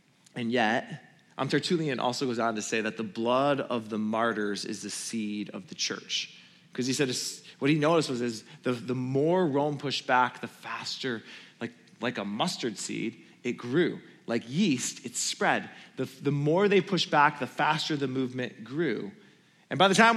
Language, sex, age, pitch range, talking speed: English, male, 20-39, 145-230 Hz, 190 wpm